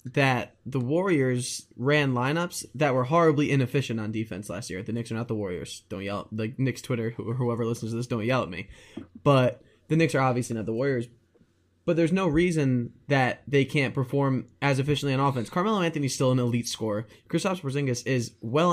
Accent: American